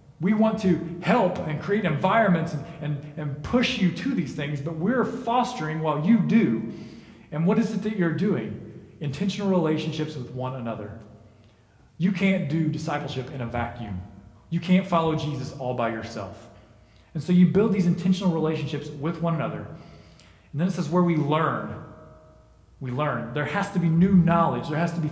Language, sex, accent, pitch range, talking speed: English, male, American, 120-175 Hz, 180 wpm